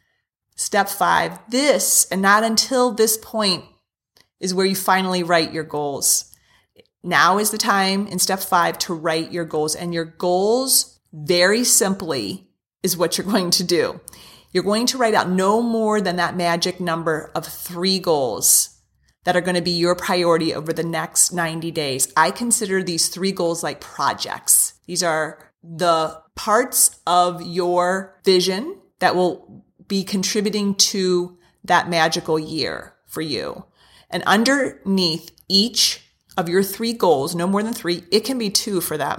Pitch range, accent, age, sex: 170-200 Hz, American, 30-49, female